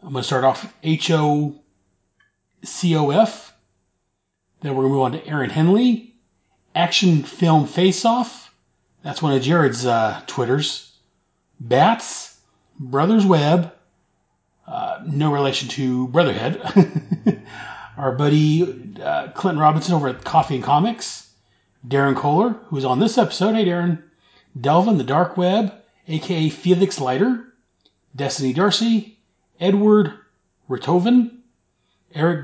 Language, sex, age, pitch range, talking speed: English, male, 40-59, 135-195 Hz, 125 wpm